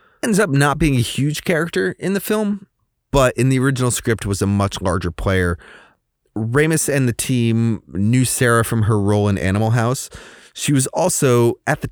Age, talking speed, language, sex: 30-49, 185 wpm, English, male